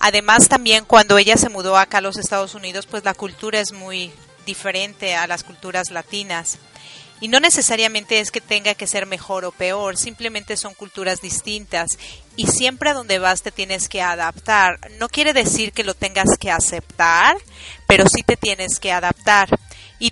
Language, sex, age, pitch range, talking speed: Spanish, female, 30-49, 185-220 Hz, 180 wpm